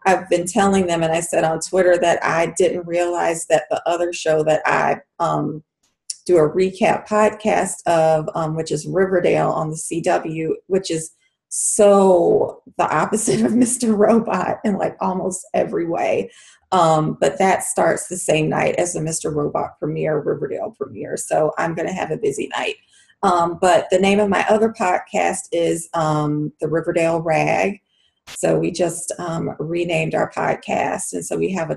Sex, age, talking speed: female, 30-49, 170 wpm